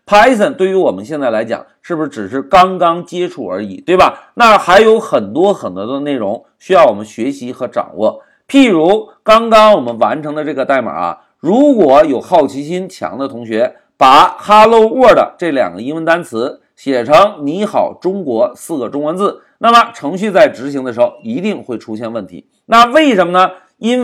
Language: Chinese